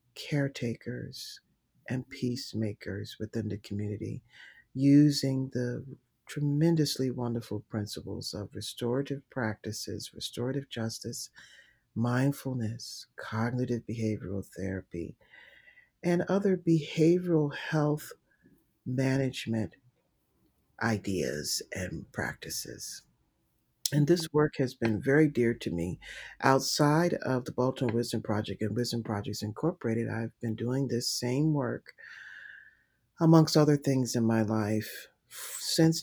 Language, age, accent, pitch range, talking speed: English, 50-69, American, 110-140 Hz, 100 wpm